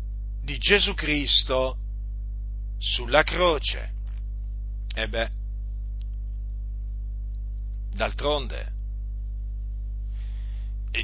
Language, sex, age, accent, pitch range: Italian, male, 50-69, native, 100-165 Hz